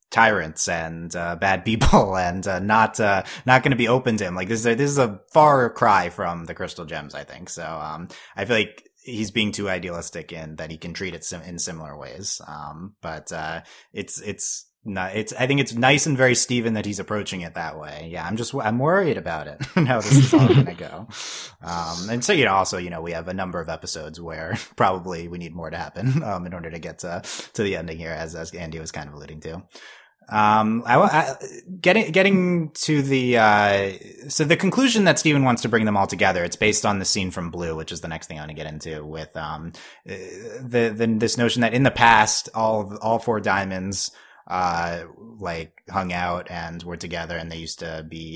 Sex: male